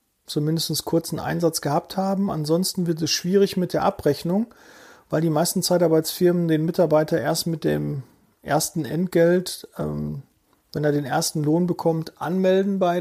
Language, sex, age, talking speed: German, male, 40-59, 150 wpm